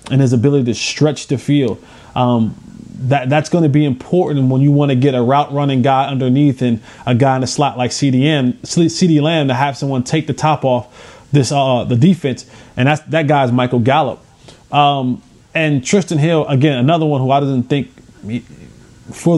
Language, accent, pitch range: English, American, 125-155 Hz